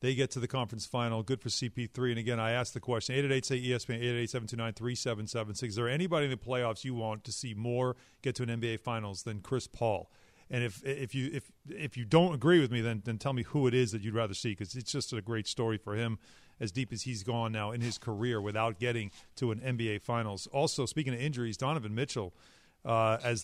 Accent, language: American, English